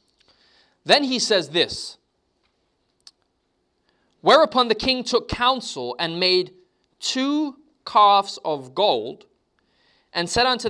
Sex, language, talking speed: male, English, 100 wpm